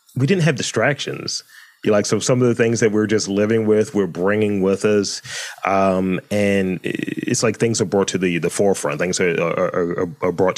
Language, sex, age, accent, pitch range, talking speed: English, male, 30-49, American, 90-110 Hz, 205 wpm